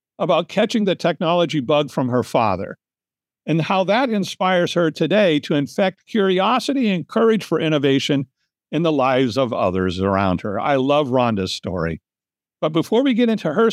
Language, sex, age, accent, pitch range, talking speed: English, male, 60-79, American, 110-165 Hz, 165 wpm